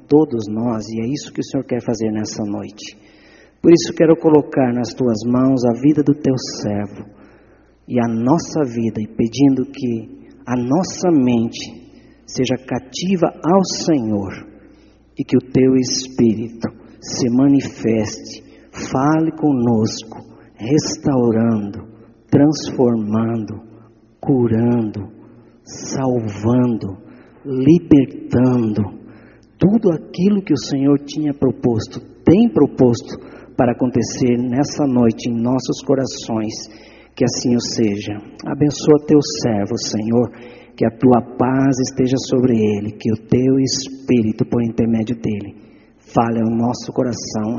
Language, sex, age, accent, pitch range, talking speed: Portuguese, male, 50-69, Brazilian, 115-140 Hz, 120 wpm